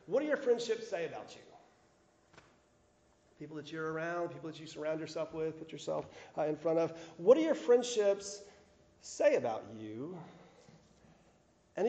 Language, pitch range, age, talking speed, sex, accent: English, 150-215 Hz, 40-59, 150 wpm, male, American